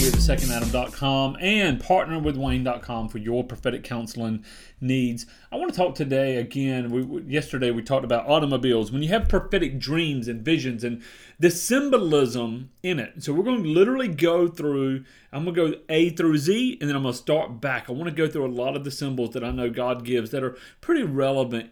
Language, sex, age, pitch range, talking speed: English, male, 30-49, 115-155 Hz, 200 wpm